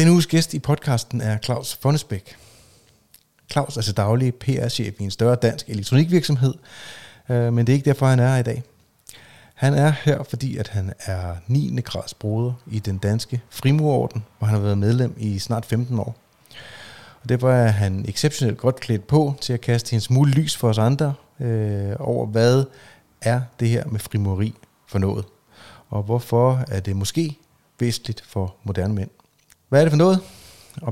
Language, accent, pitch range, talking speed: Danish, native, 110-135 Hz, 180 wpm